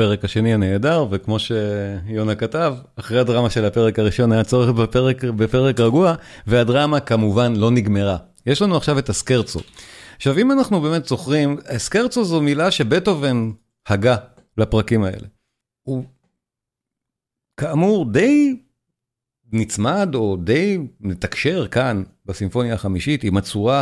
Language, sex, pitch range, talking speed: Hebrew, male, 105-150 Hz, 125 wpm